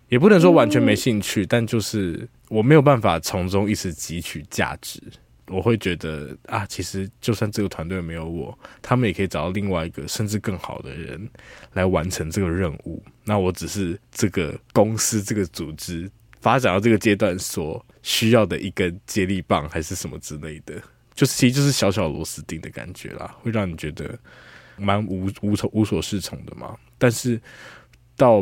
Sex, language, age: male, Chinese, 20-39